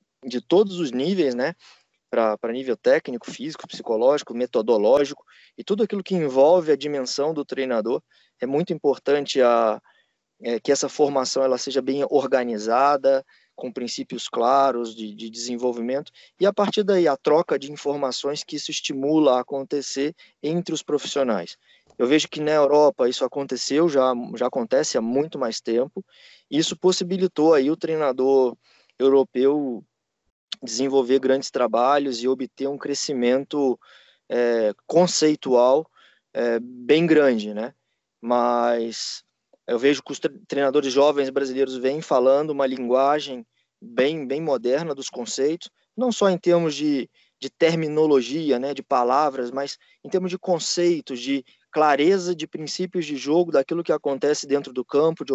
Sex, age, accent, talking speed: male, 20-39, Brazilian, 145 wpm